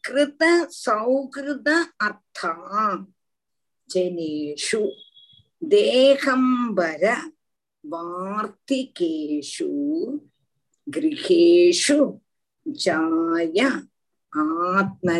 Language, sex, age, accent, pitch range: Tamil, female, 50-69, native, 190-315 Hz